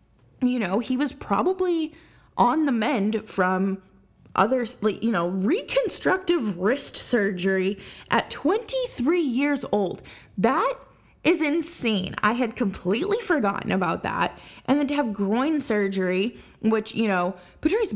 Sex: female